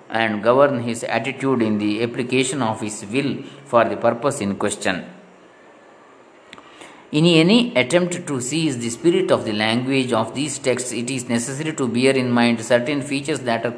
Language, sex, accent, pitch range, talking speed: Kannada, male, native, 115-140 Hz, 175 wpm